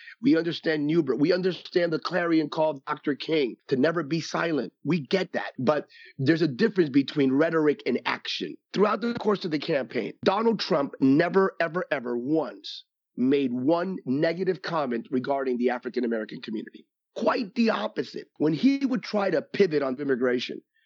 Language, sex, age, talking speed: English, male, 30-49, 160 wpm